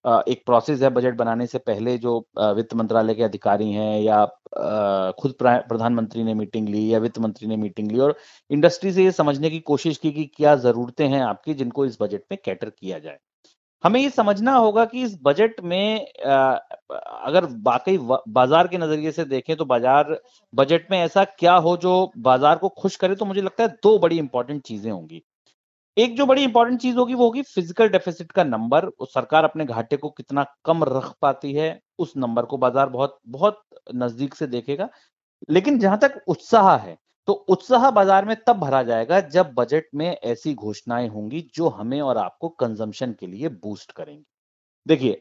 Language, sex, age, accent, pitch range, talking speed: Hindi, male, 30-49, native, 120-185 Hz, 170 wpm